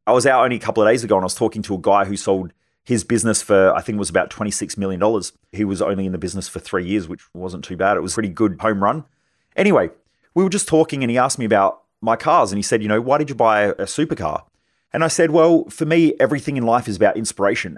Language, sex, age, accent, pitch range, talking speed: English, male, 30-49, Australian, 105-140 Hz, 280 wpm